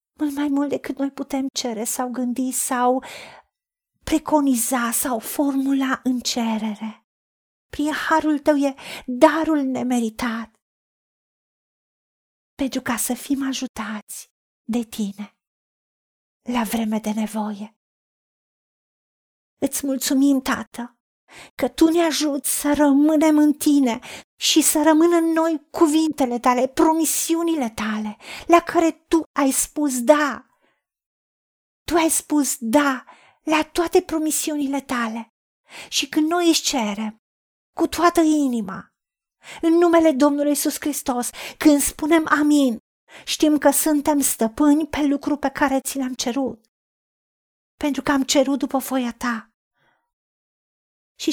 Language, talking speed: Romanian, 115 wpm